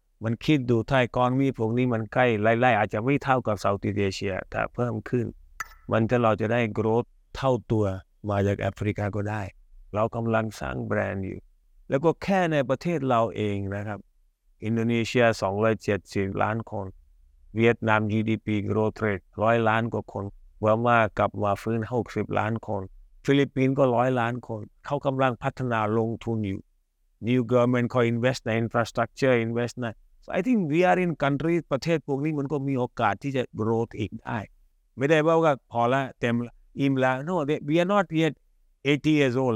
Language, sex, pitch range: Thai, male, 105-135 Hz